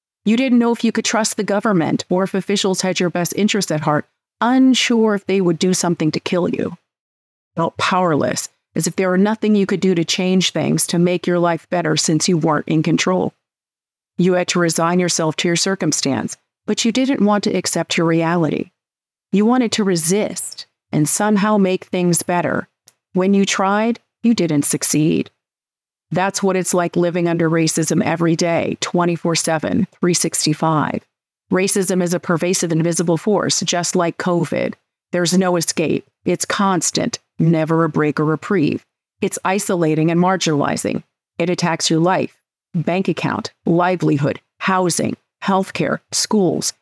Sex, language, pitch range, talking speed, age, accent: female, English, 165-195 Hz, 160 wpm, 40-59, American